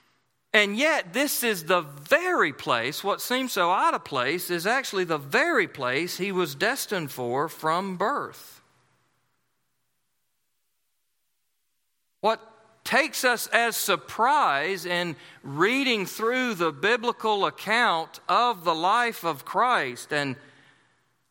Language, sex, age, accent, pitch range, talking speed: English, male, 40-59, American, 165-235 Hz, 115 wpm